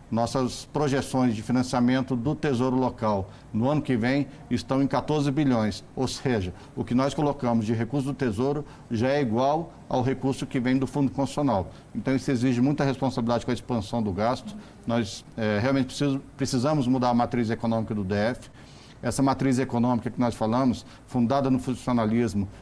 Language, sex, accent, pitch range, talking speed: Portuguese, male, Brazilian, 115-135 Hz, 165 wpm